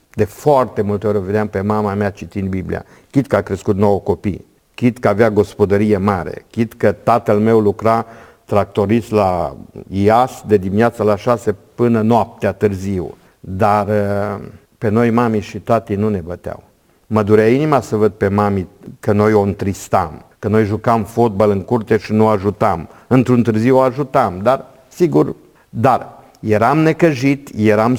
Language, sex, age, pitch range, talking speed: Romanian, male, 50-69, 105-130 Hz, 160 wpm